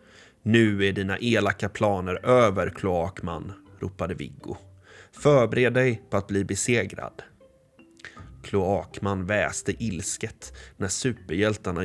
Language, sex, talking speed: Swedish, male, 100 wpm